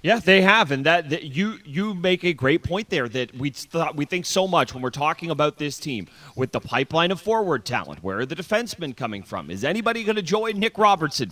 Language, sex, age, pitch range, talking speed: English, male, 30-49, 125-165 Hz, 240 wpm